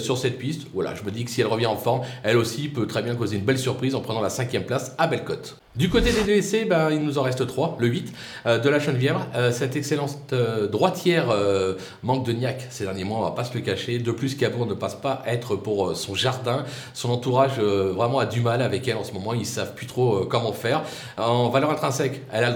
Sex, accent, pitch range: male, French, 115-145 Hz